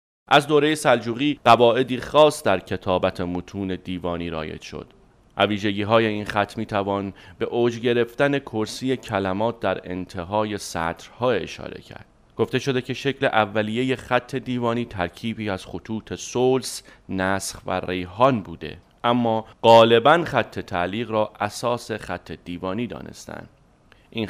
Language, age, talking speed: Persian, 30-49, 130 wpm